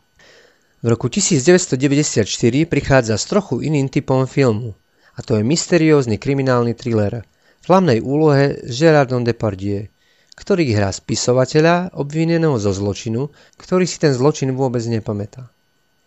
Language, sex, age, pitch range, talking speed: Slovak, male, 30-49, 115-145 Hz, 125 wpm